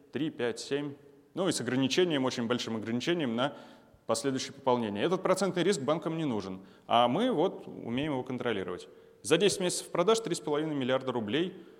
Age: 20-39